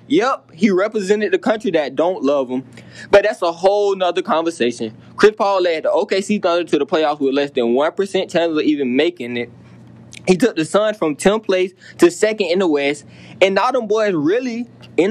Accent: American